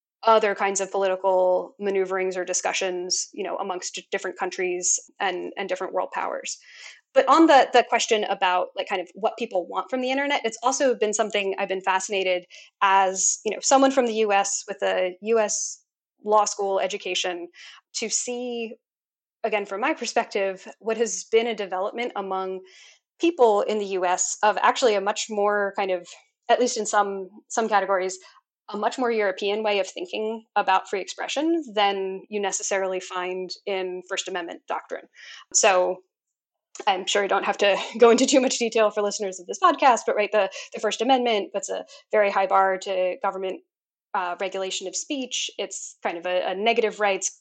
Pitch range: 190-230 Hz